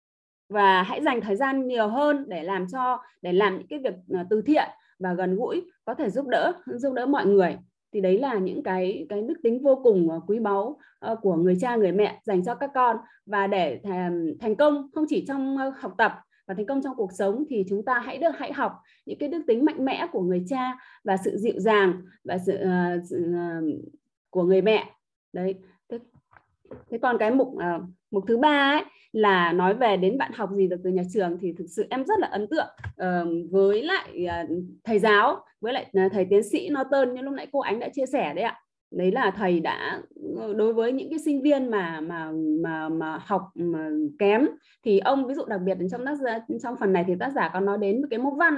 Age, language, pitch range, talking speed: 20-39, Vietnamese, 185-280 Hz, 225 wpm